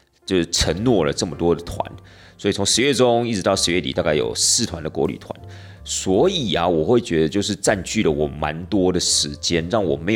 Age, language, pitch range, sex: 30-49, Chinese, 85-115 Hz, male